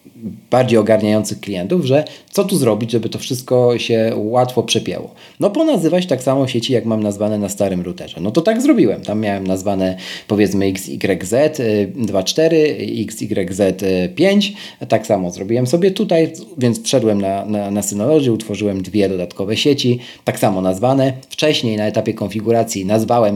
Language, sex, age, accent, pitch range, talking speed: Polish, male, 40-59, native, 100-130 Hz, 145 wpm